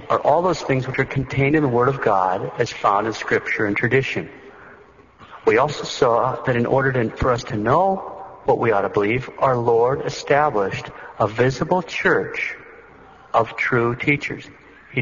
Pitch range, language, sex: 125-165 Hz, English, male